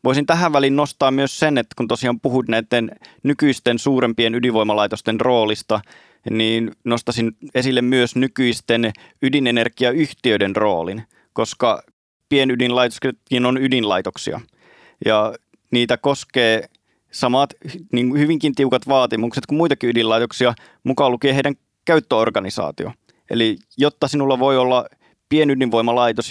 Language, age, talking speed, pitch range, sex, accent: Finnish, 30-49, 110 wpm, 115-130 Hz, male, native